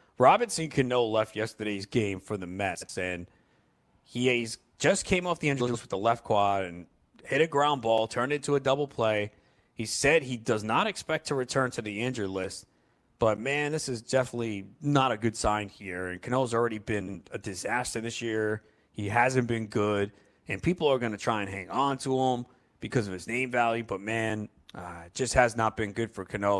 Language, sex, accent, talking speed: English, male, American, 210 wpm